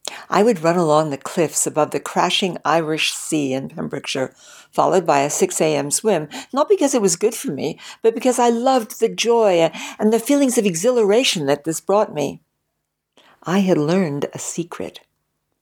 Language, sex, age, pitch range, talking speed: English, female, 60-79, 155-220 Hz, 175 wpm